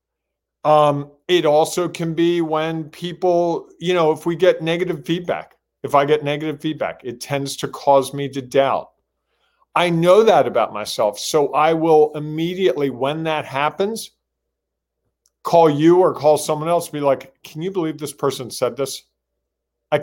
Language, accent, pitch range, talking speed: English, American, 135-170 Hz, 165 wpm